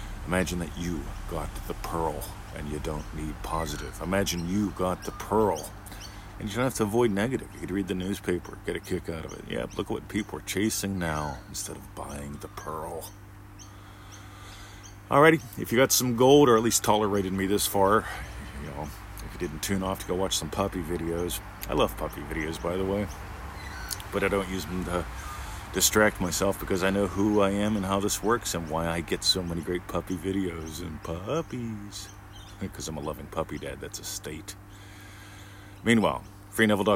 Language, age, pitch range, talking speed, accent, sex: English, 40-59, 90-100 Hz, 195 wpm, American, male